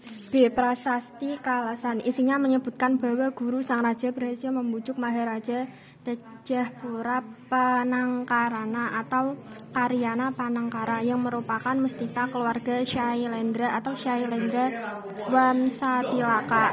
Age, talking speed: 20-39, 85 wpm